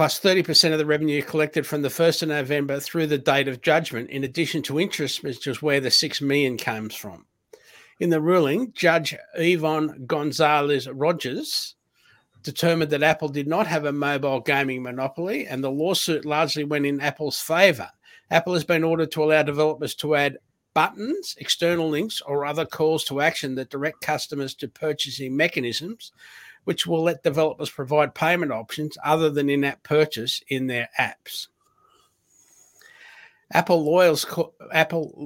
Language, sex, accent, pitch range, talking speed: English, male, Australian, 140-165 Hz, 150 wpm